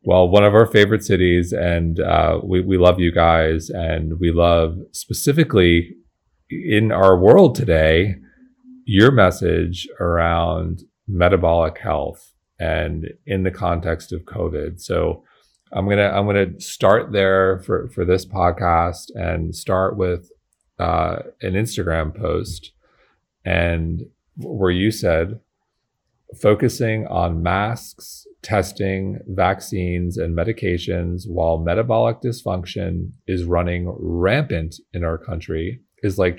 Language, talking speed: English, 120 wpm